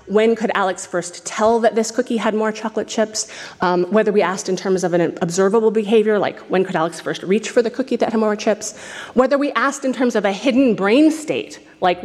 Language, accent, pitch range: French, American, 175-245 Hz